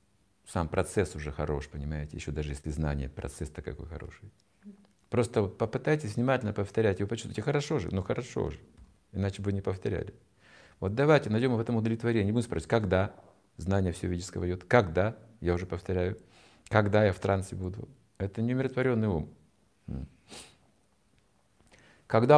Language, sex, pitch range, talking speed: Russian, male, 85-110 Hz, 140 wpm